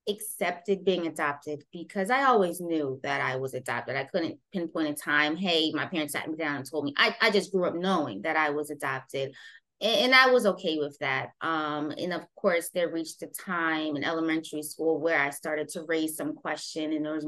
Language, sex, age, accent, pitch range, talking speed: English, female, 20-39, American, 150-175 Hz, 215 wpm